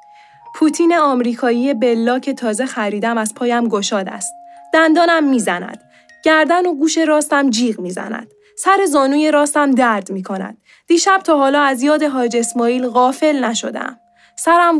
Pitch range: 225-325 Hz